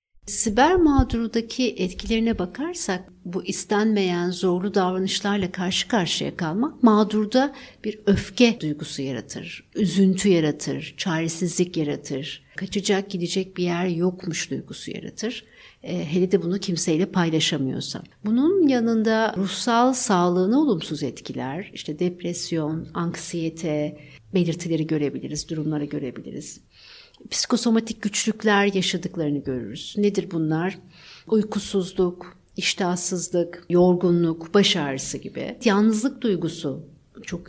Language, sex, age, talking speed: Turkish, female, 60-79, 95 wpm